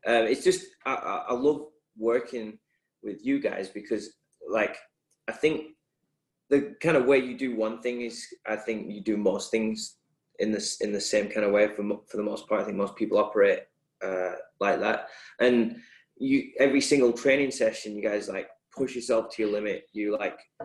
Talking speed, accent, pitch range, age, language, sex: 195 wpm, British, 105-125 Hz, 20-39, English, male